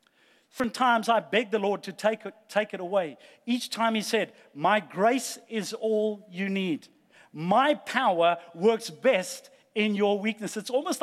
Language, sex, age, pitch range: English, male, 50-69, 200-240 Hz